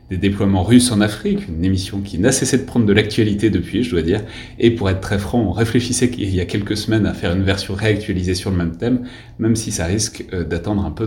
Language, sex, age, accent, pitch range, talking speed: French, male, 30-49, French, 90-115 Hz, 255 wpm